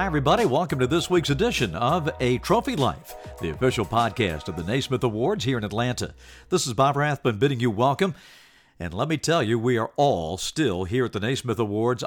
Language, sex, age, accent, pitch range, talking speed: English, male, 50-69, American, 100-130 Hz, 210 wpm